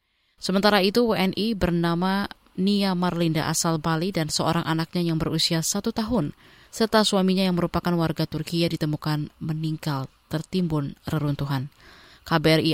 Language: Indonesian